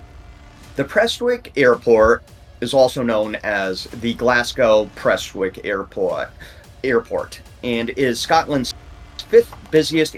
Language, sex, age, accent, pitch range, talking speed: English, male, 40-59, American, 105-145 Hz, 95 wpm